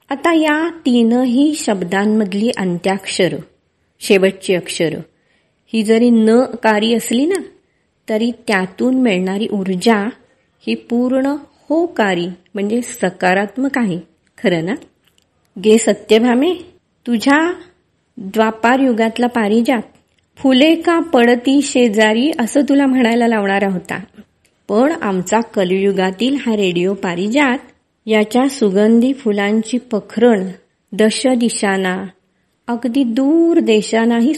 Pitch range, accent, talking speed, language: 200-255 Hz, native, 100 wpm, Marathi